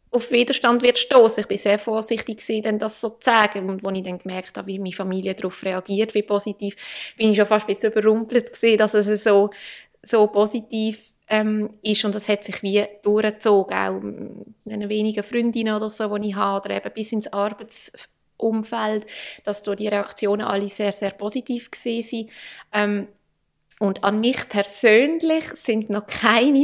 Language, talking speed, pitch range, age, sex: German, 165 wpm, 205-230 Hz, 20-39, female